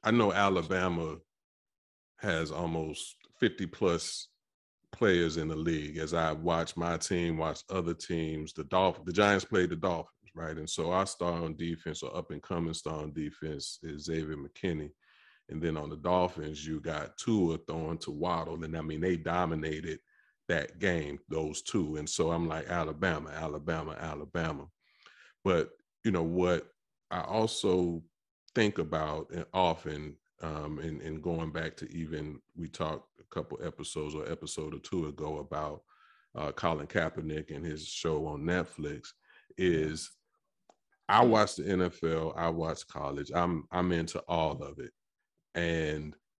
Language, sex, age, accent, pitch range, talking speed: English, male, 30-49, American, 75-85 Hz, 155 wpm